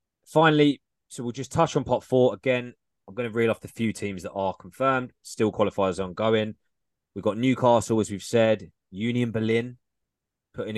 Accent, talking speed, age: British, 180 wpm, 20-39